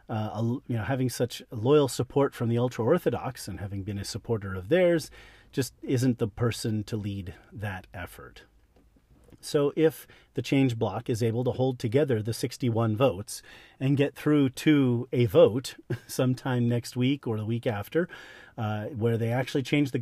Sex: male